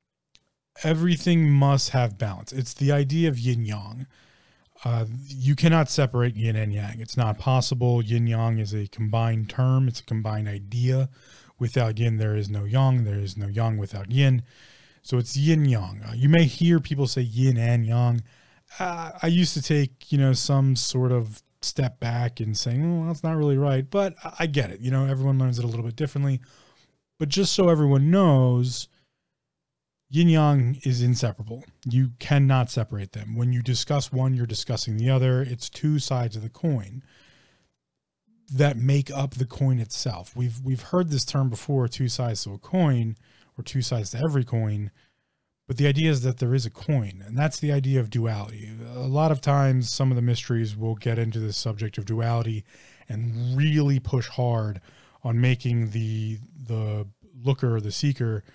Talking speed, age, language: 185 wpm, 20-39, English